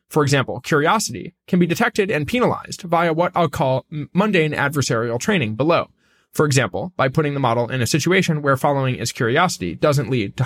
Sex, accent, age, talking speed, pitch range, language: male, American, 20-39, 185 wpm, 135-185 Hz, English